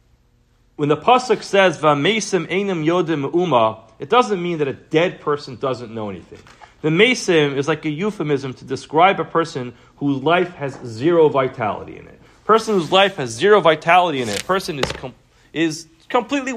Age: 40-59